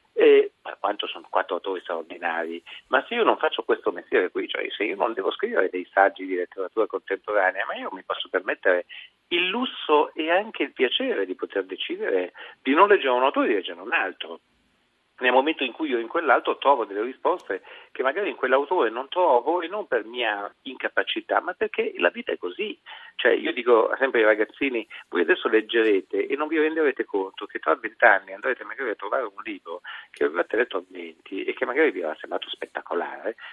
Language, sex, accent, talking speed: Italian, male, native, 200 wpm